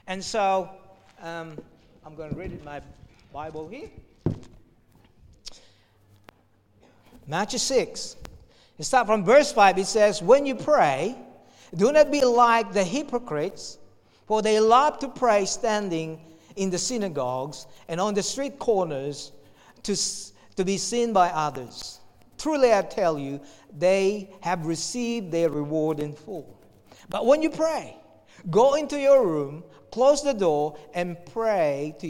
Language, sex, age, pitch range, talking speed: English, male, 50-69, 140-215 Hz, 135 wpm